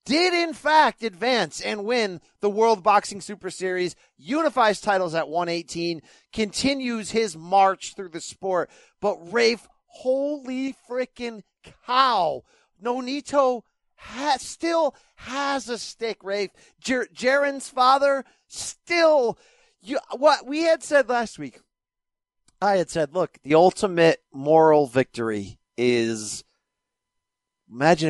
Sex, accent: male, American